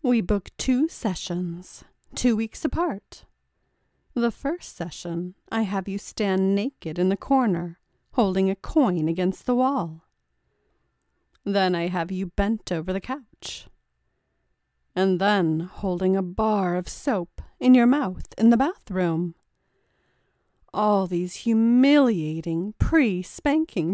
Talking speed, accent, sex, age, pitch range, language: 125 wpm, American, female, 40-59, 175-235 Hz, English